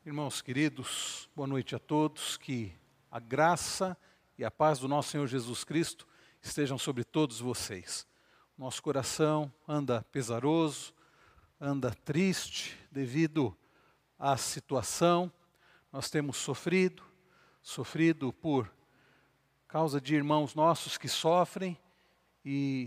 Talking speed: 110 wpm